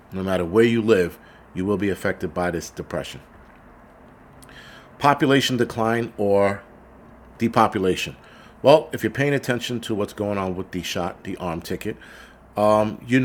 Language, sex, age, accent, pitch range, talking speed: English, male, 50-69, American, 95-115 Hz, 150 wpm